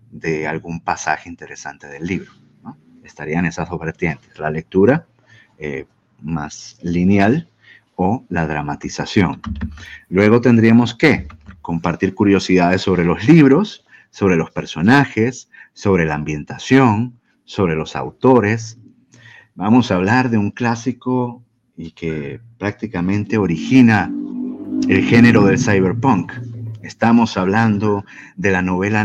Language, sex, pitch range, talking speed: Spanish, male, 90-125 Hz, 110 wpm